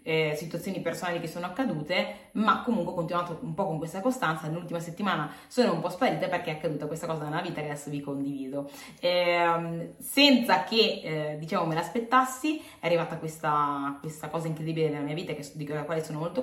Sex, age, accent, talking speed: female, 20-39, native, 195 wpm